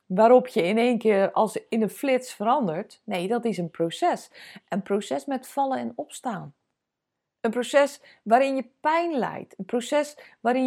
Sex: female